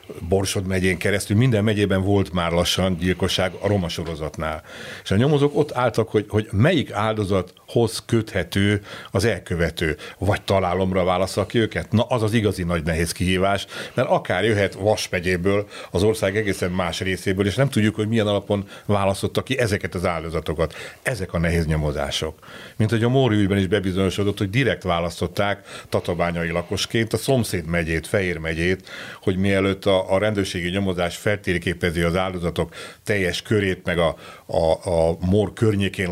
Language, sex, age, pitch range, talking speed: Hungarian, male, 60-79, 85-105 Hz, 155 wpm